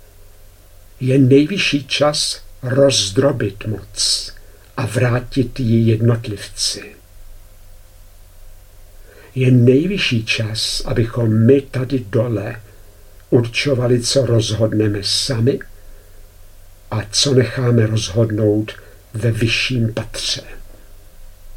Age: 60-79